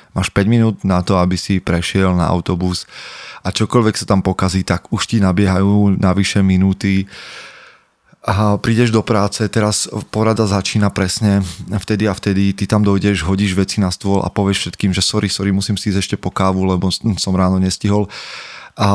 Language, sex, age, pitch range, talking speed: Slovak, male, 20-39, 95-105 Hz, 180 wpm